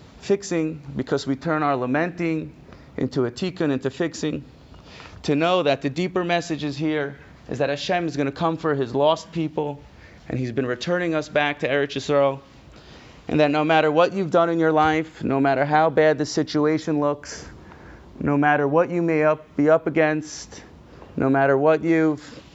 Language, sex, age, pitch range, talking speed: English, male, 30-49, 130-155 Hz, 185 wpm